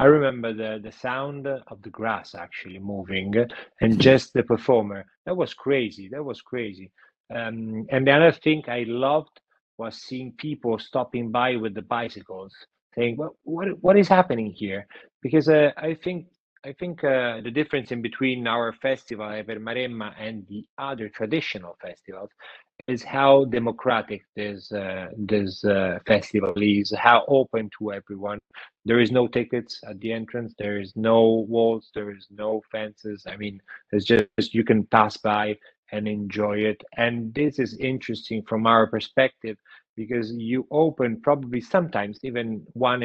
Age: 30-49